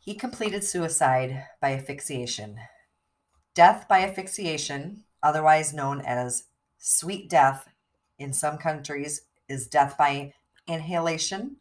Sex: female